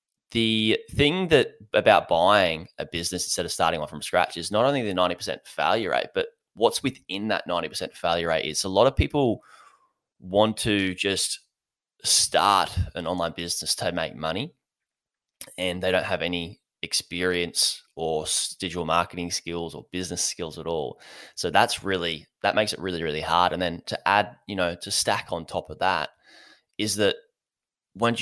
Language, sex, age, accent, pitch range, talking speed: English, male, 10-29, Australian, 85-105 Hz, 170 wpm